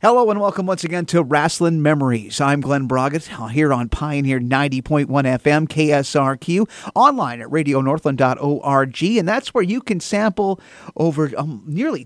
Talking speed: 145 wpm